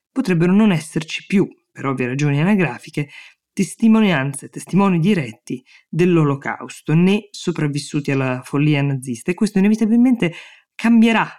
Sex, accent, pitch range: female, native, 140-165 Hz